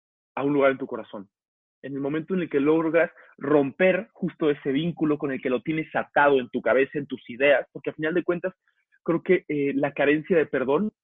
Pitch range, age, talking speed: 135-165 Hz, 30-49, 225 wpm